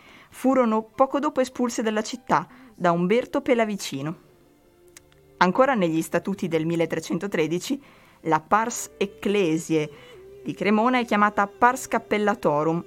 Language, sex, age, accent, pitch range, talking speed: Italian, female, 20-39, native, 165-215 Hz, 105 wpm